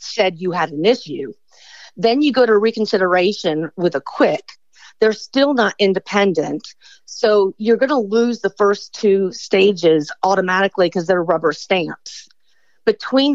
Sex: female